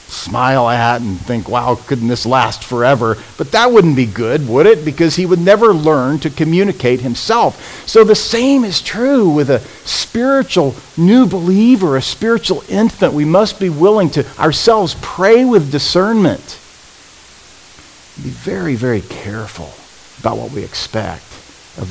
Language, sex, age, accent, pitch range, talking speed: English, male, 50-69, American, 95-160 Hz, 155 wpm